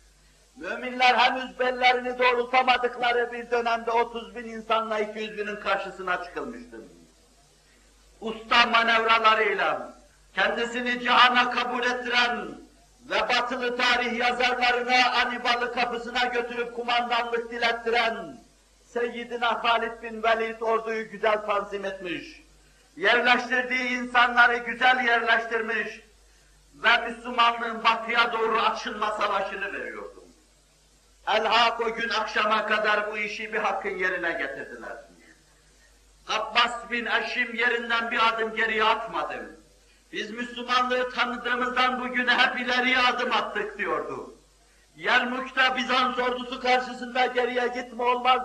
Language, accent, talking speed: Turkish, native, 100 wpm